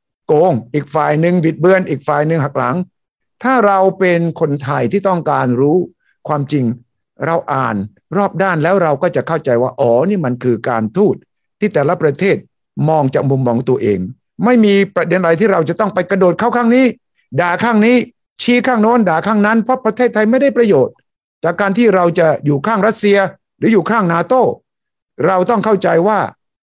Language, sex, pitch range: English, male, 150-225 Hz